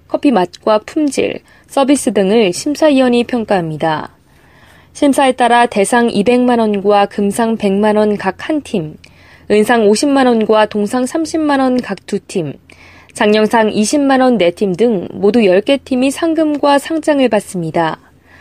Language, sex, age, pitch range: Korean, female, 20-39, 200-260 Hz